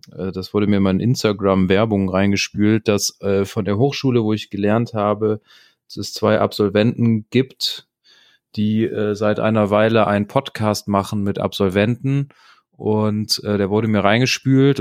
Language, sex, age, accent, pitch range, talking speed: German, male, 30-49, German, 100-115 Hz, 150 wpm